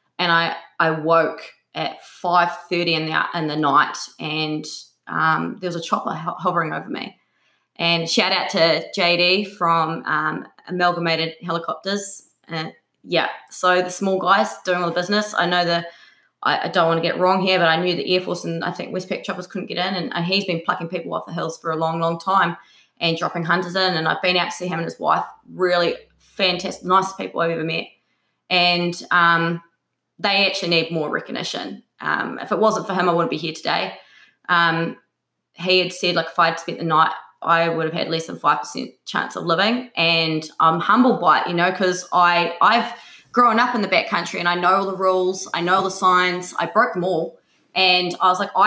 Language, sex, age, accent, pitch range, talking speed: English, female, 20-39, Australian, 165-185 Hz, 215 wpm